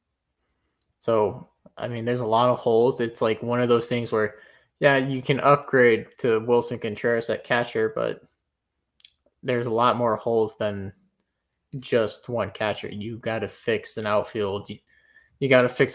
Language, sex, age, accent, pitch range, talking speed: English, male, 20-39, American, 105-130 Hz, 160 wpm